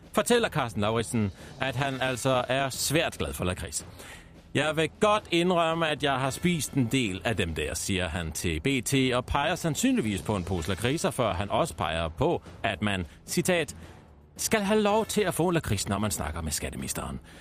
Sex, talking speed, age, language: male, 190 wpm, 40-59, Danish